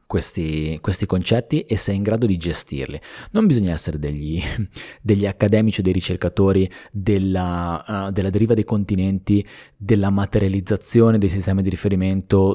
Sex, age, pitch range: male, 20-39, 95-115 Hz